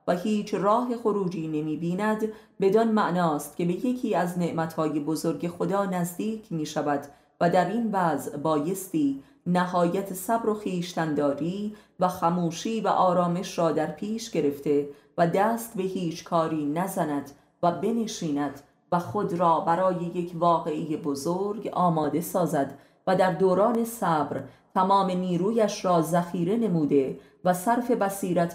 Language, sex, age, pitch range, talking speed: Persian, female, 30-49, 160-200 Hz, 130 wpm